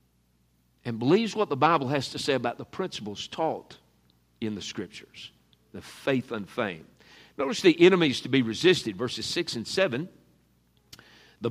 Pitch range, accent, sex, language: 110-155 Hz, American, male, English